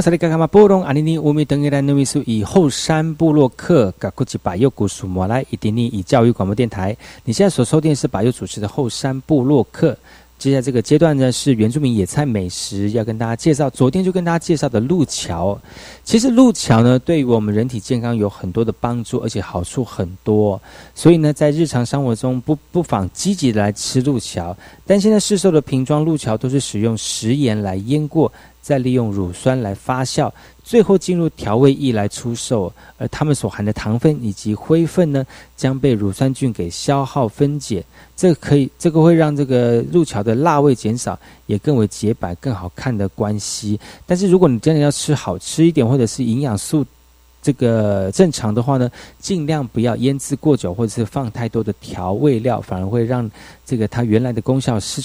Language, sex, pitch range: Chinese, male, 105-150 Hz